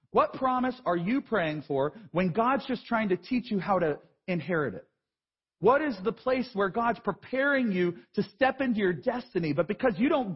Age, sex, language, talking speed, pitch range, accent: 40-59, male, English, 195 wpm, 190-260 Hz, American